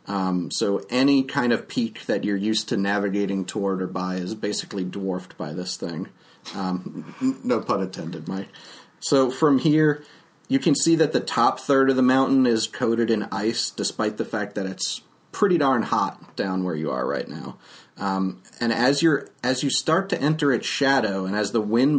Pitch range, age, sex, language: 100-130 Hz, 30-49, male, English